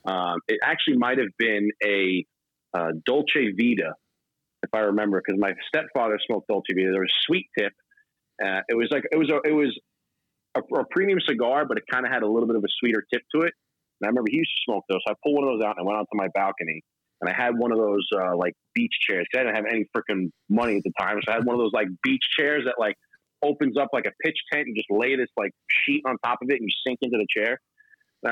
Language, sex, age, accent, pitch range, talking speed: English, male, 30-49, American, 105-135 Hz, 265 wpm